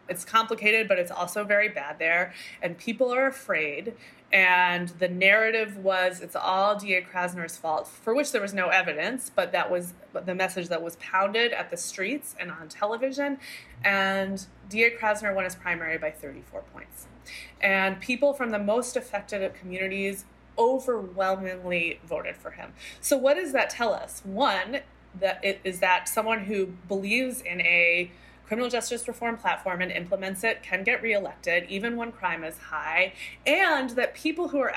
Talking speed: 165 wpm